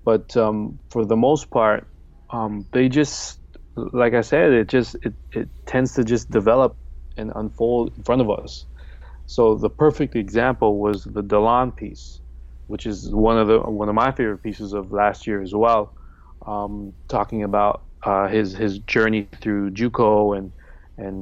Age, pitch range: 20-39, 95-115 Hz